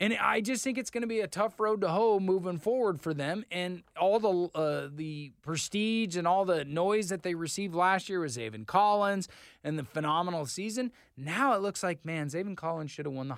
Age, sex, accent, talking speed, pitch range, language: 20-39, male, American, 225 wpm, 140-190 Hz, English